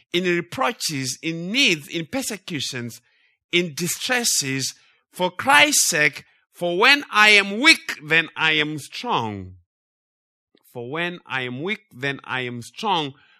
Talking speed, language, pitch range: 130 wpm, English, 135-200 Hz